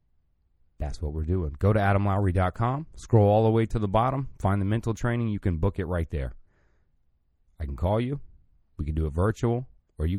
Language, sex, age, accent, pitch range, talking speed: English, male, 30-49, American, 80-110 Hz, 205 wpm